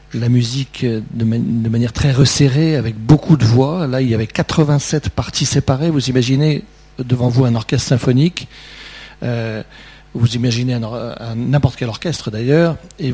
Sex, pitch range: male, 125-155 Hz